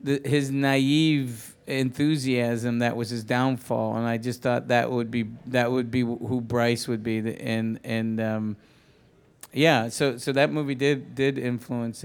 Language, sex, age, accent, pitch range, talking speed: English, male, 50-69, American, 120-145 Hz, 165 wpm